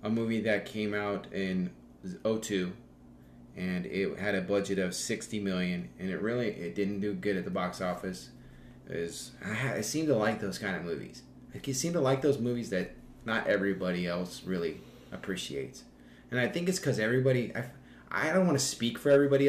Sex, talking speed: male, 195 wpm